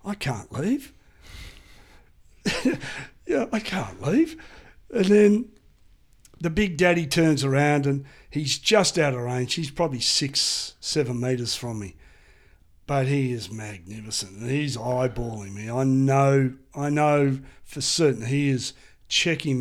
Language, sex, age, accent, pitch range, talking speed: English, male, 50-69, Australian, 125-150 Hz, 135 wpm